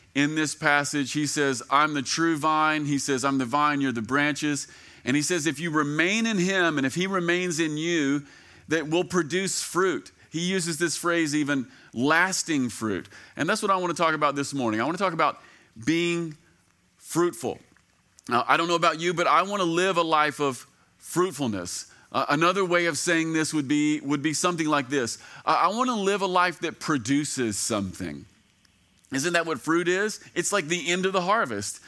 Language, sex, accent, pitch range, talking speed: English, male, American, 145-180 Hz, 195 wpm